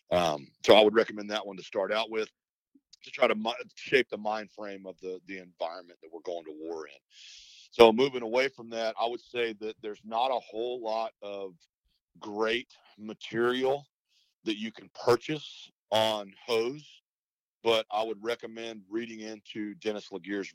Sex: male